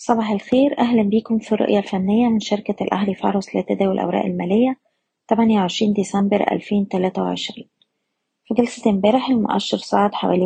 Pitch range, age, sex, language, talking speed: 195-225 Hz, 20-39, female, Arabic, 130 wpm